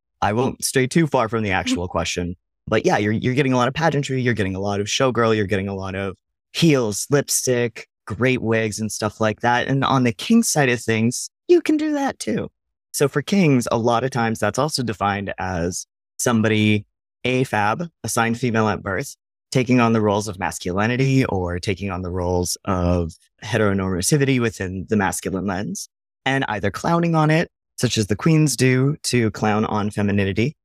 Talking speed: 190 wpm